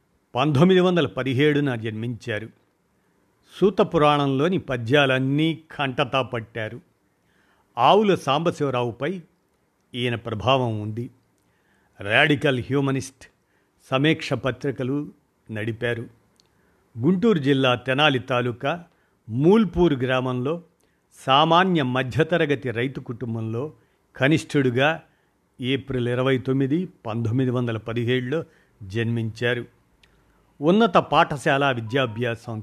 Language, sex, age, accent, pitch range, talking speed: Telugu, male, 50-69, native, 120-150 Hz, 70 wpm